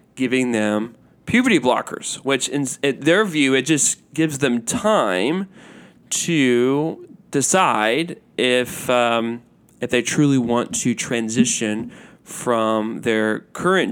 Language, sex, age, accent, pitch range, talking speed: English, male, 20-39, American, 115-160 Hz, 115 wpm